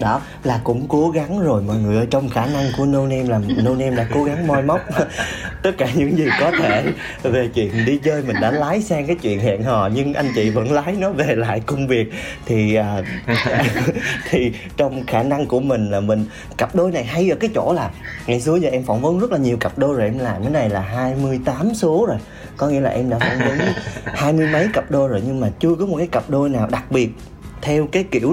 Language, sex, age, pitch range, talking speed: Vietnamese, male, 30-49, 110-145 Hz, 245 wpm